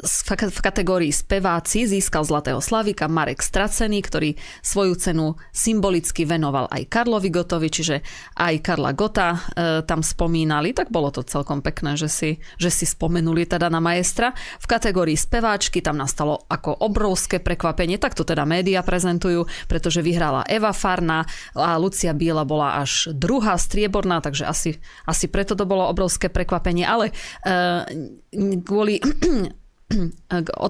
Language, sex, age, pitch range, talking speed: Slovak, female, 30-49, 160-195 Hz, 140 wpm